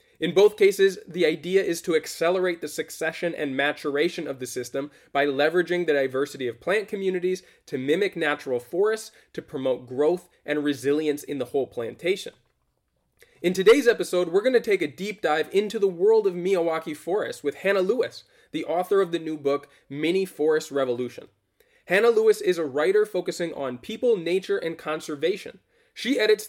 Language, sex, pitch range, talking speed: English, male, 145-205 Hz, 170 wpm